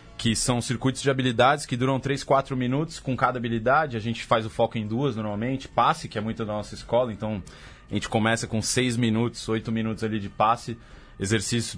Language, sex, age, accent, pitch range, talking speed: Portuguese, male, 20-39, Brazilian, 105-125 Hz, 210 wpm